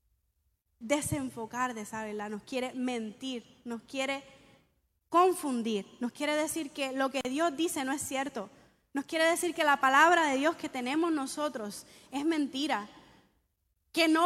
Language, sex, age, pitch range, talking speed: Spanish, female, 20-39, 270-350 Hz, 150 wpm